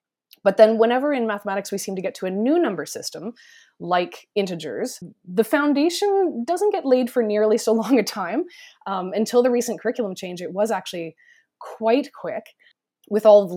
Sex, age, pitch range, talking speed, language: female, 20-39, 170-230 Hz, 180 wpm, English